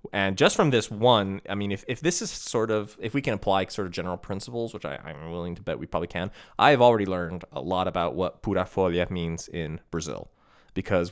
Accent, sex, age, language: American, male, 20-39, English